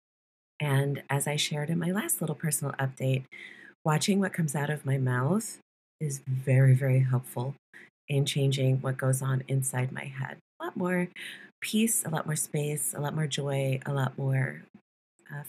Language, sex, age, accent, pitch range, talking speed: English, female, 40-59, American, 135-170 Hz, 175 wpm